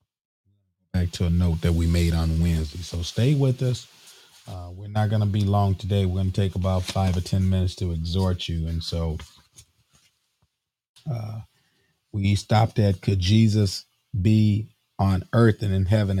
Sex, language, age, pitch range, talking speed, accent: male, English, 40-59, 85-105 Hz, 175 wpm, American